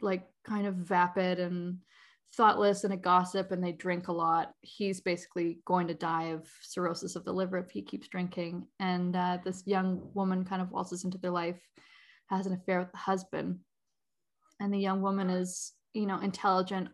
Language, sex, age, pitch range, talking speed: English, female, 20-39, 180-200 Hz, 190 wpm